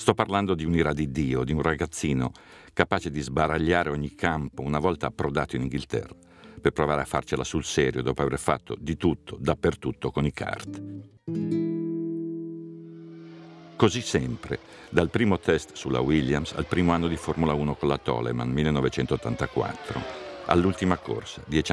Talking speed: 150 wpm